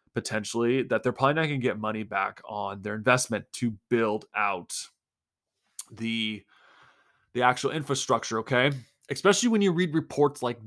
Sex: male